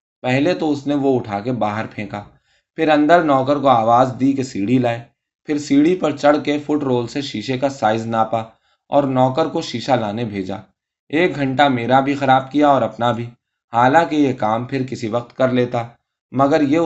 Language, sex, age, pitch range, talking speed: Urdu, male, 20-39, 115-140 Hz, 195 wpm